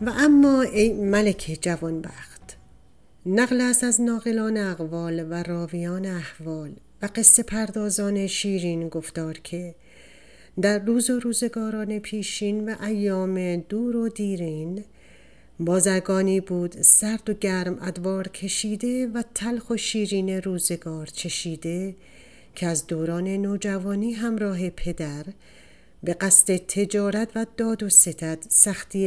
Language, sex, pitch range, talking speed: Persian, female, 175-215 Hz, 115 wpm